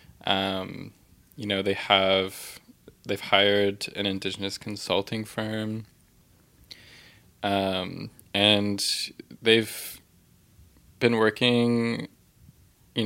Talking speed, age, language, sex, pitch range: 80 wpm, 20-39, English, male, 95-105 Hz